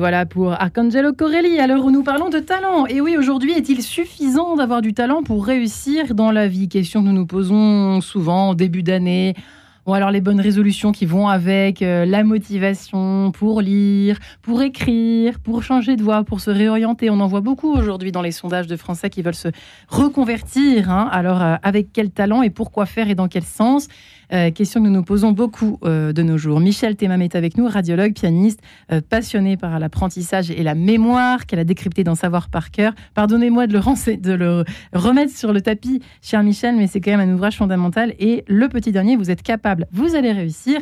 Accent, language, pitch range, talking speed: French, French, 185-240 Hz, 210 wpm